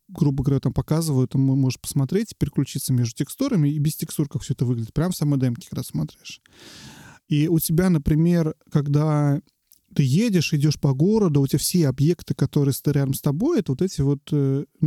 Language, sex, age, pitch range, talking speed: Russian, male, 30-49, 140-170 Hz, 190 wpm